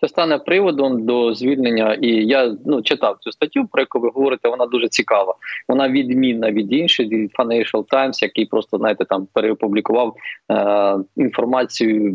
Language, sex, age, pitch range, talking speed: Ukrainian, male, 20-39, 110-140 Hz, 160 wpm